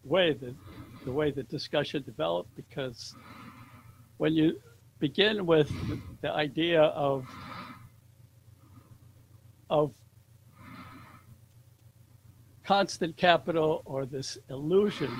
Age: 70-89